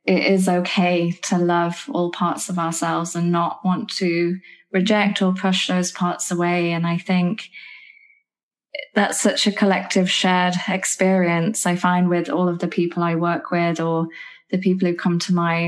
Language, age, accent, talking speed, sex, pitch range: English, 20-39, British, 170 wpm, female, 170-190 Hz